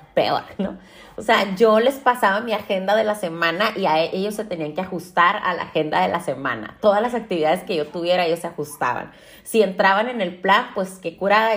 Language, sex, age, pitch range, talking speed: Spanish, female, 30-49, 170-220 Hz, 220 wpm